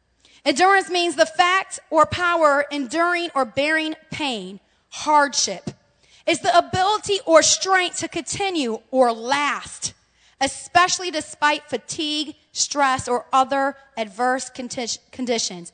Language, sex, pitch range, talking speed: English, female, 255-325 Hz, 105 wpm